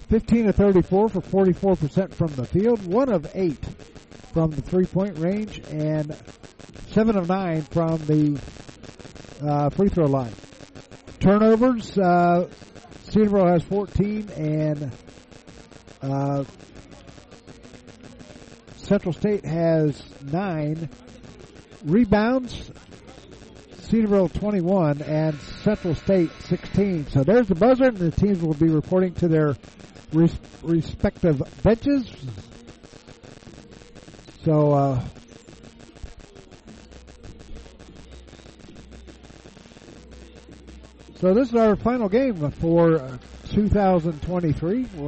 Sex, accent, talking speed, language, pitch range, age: male, American, 90 wpm, English, 145-195 Hz, 50-69